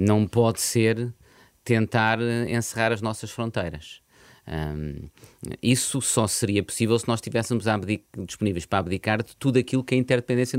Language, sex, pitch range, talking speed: Portuguese, male, 110-140 Hz, 145 wpm